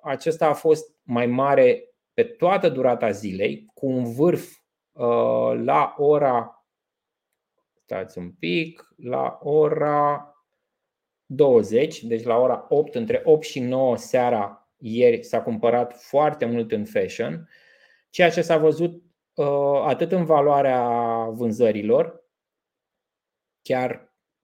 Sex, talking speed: male, 115 wpm